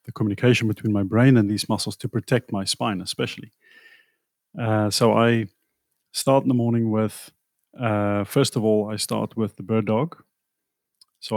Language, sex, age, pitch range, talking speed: English, male, 30-49, 105-120 Hz, 170 wpm